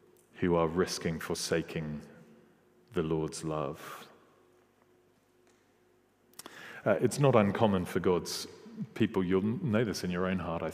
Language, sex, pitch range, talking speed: English, male, 90-105 Hz, 125 wpm